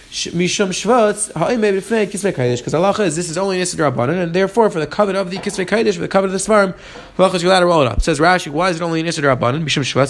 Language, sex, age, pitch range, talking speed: English, male, 30-49, 155-190 Hz, 285 wpm